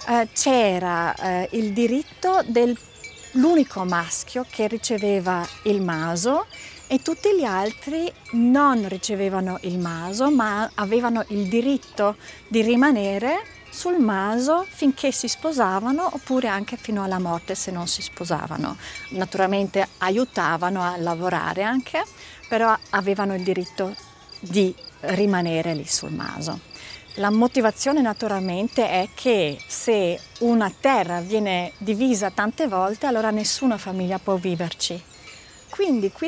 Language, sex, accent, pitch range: Italian, female, native, 190-260 Hz